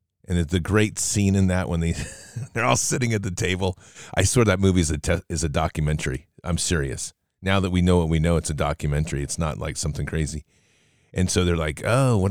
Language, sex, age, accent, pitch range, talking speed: English, male, 40-59, American, 80-105 Hz, 240 wpm